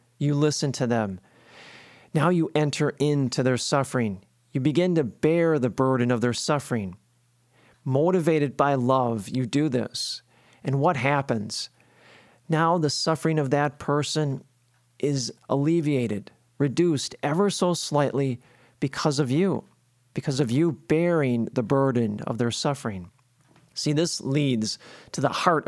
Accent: American